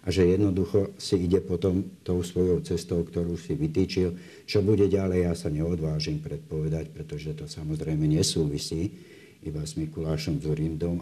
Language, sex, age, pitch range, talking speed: Slovak, male, 60-79, 80-90 Hz, 145 wpm